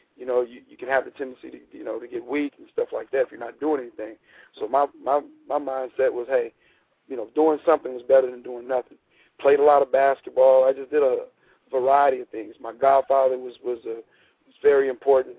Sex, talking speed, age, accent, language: male, 230 wpm, 40-59, American, English